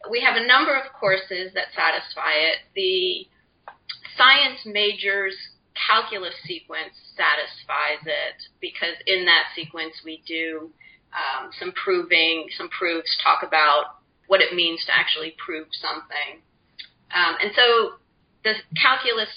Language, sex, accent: English, female, American